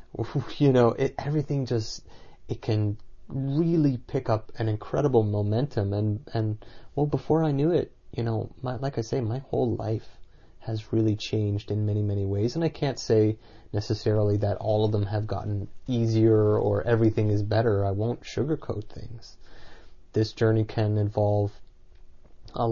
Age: 30-49